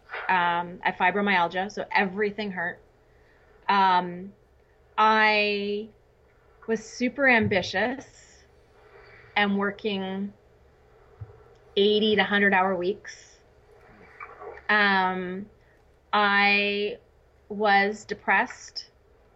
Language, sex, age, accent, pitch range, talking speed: English, female, 30-49, American, 190-225 Hz, 70 wpm